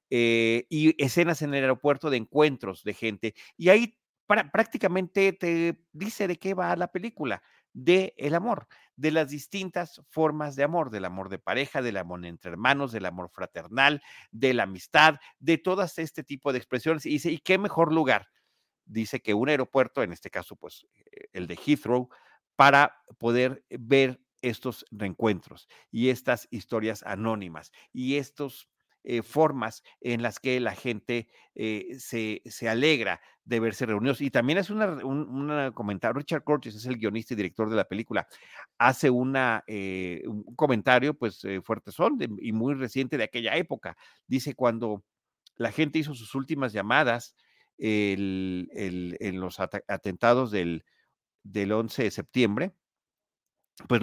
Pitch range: 110-155 Hz